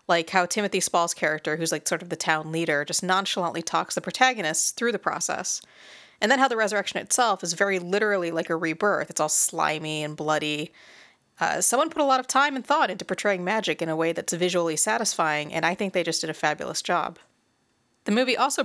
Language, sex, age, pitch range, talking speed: English, female, 30-49, 165-205 Hz, 215 wpm